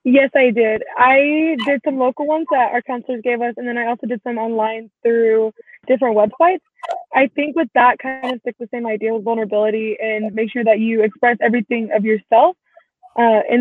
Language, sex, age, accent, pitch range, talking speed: English, female, 20-39, American, 220-250 Hz, 205 wpm